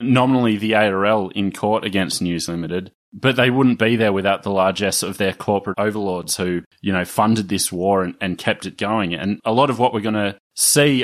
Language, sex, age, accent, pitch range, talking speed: English, male, 30-49, Australian, 95-115 Hz, 215 wpm